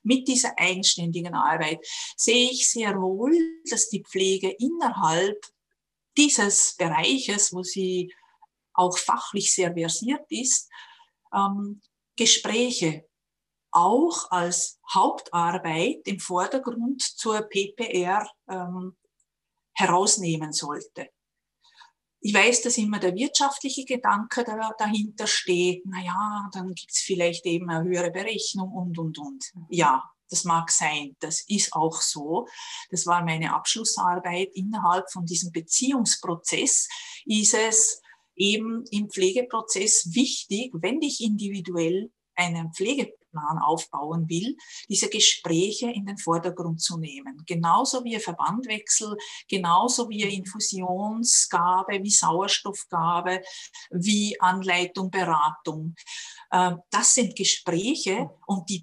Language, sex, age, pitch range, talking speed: German, female, 50-69, 180-245 Hz, 105 wpm